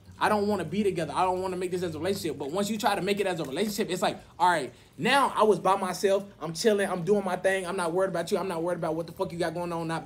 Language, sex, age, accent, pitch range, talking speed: English, male, 20-39, American, 185-220 Hz, 340 wpm